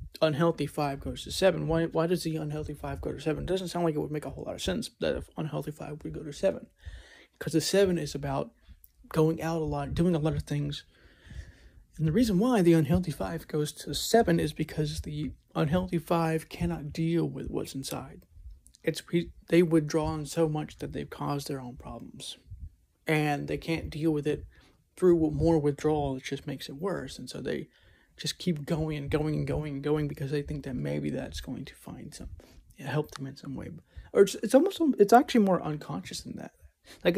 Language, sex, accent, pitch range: English, male, American, 145-165 Hz